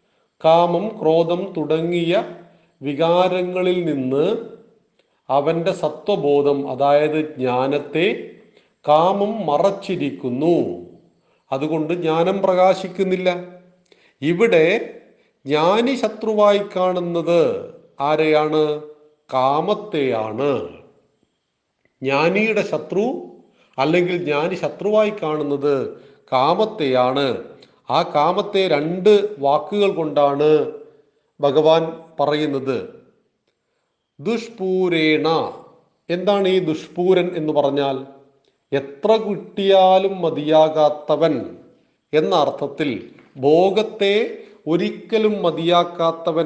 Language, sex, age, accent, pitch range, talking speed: Malayalam, male, 40-59, native, 150-195 Hz, 60 wpm